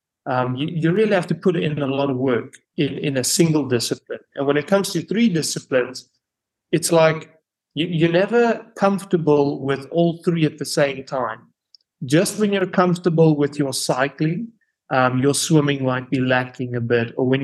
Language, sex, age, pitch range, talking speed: English, male, 30-49, 130-165 Hz, 185 wpm